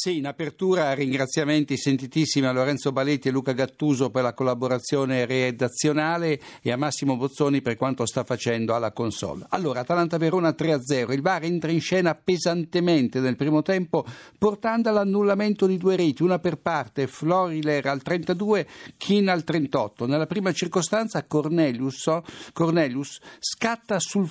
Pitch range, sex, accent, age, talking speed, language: 135-180 Hz, male, native, 60-79, 145 wpm, Italian